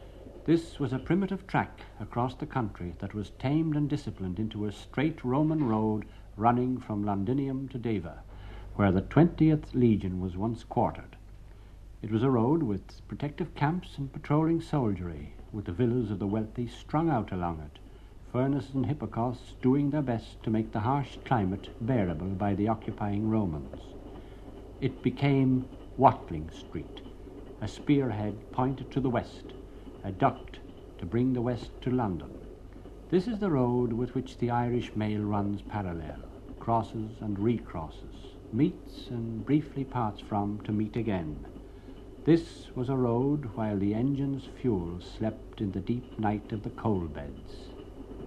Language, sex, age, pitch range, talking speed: English, male, 60-79, 100-130 Hz, 155 wpm